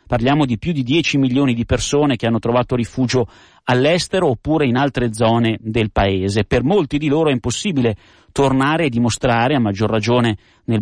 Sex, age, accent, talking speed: male, 40-59, native, 175 wpm